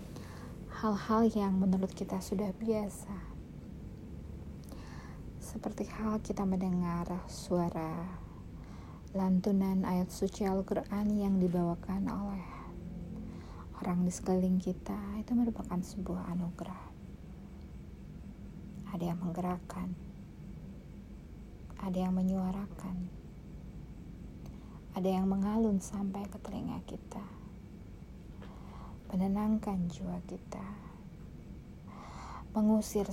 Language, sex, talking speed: Indonesian, female, 80 wpm